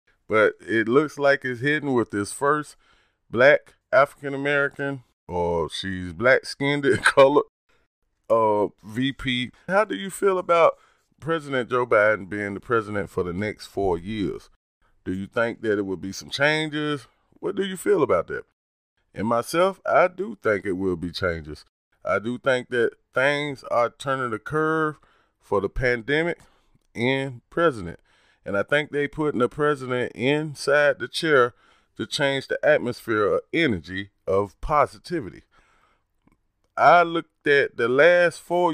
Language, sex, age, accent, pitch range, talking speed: English, male, 30-49, American, 110-145 Hz, 145 wpm